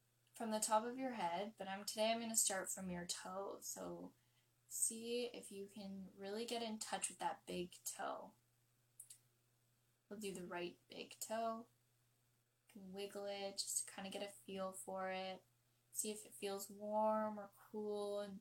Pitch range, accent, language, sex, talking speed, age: 125-205 Hz, American, English, female, 180 wpm, 10-29